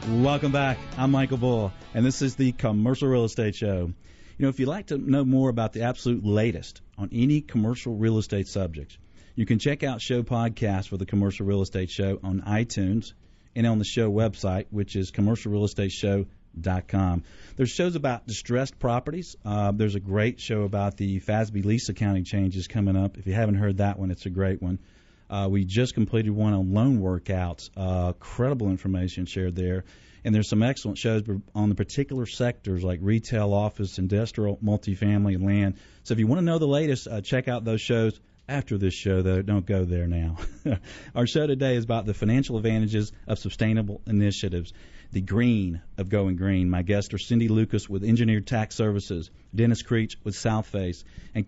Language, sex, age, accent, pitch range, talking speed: English, male, 40-59, American, 95-115 Hz, 190 wpm